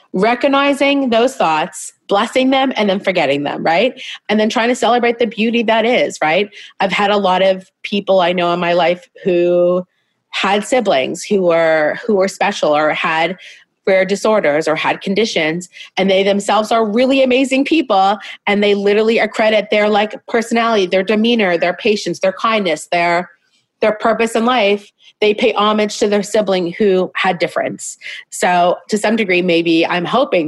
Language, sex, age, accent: English, female, 30-49, American